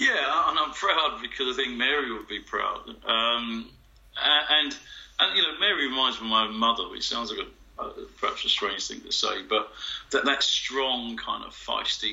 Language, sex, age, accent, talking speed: English, male, 50-69, British, 205 wpm